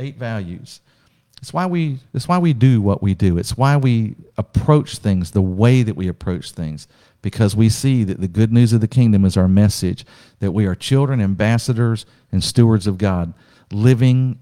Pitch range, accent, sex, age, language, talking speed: 100-130 Hz, American, male, 50-69, English, 185 wpm